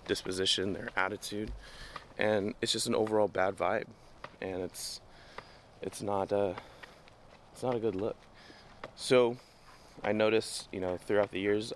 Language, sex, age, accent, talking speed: English, male, 20-39, American, 145 wpm